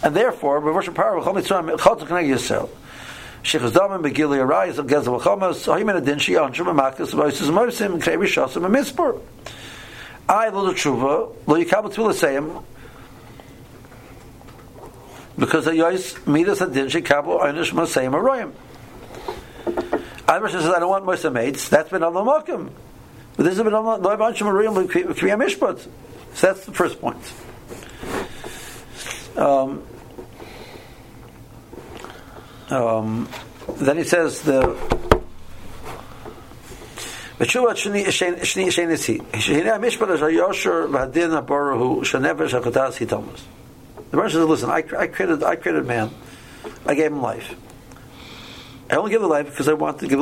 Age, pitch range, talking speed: 60-79, 130-195 Hz, 55 wpm